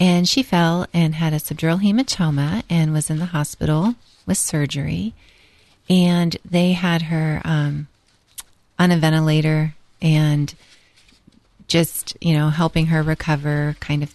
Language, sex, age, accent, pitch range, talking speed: English, female, 40-59, American, 155-185 Hz, 135 wpm